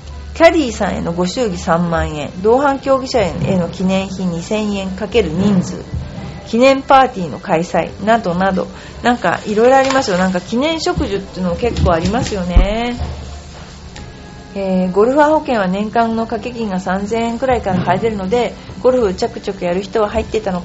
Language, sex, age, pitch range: Japanese, female, 40-59, 180-235 Hz